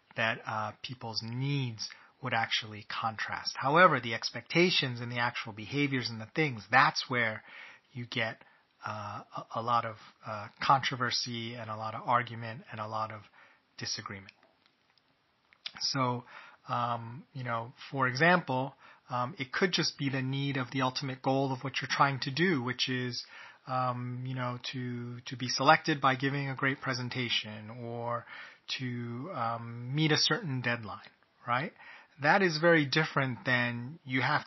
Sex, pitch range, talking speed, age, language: male, 120-140 Hz, 155 wpm, 30-49, English